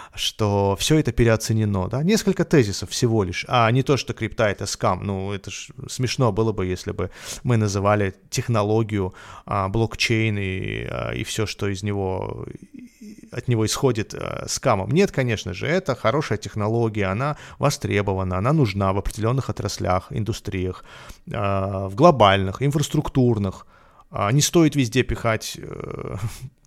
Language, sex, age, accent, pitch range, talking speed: Russian, male, 30-49, native, 105-125 Hz, 135 wpm